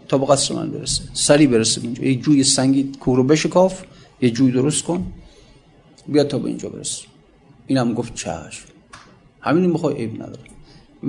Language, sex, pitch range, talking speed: Persian, male, 130-155 Hz, 170 wpm